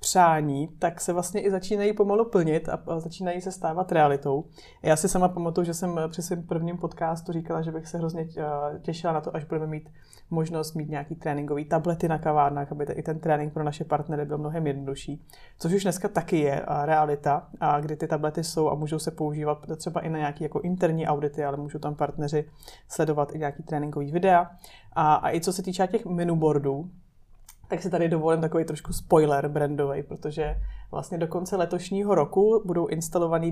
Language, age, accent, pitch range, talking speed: Czech, 30-49, native, 150-170 Hz, 185 wpm